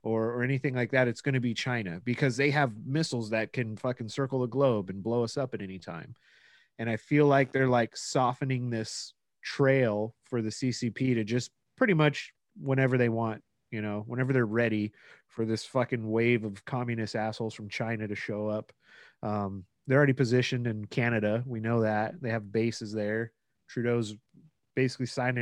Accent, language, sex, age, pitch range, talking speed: American, English, male, 30-49, 110-135 Hz, 185 wpm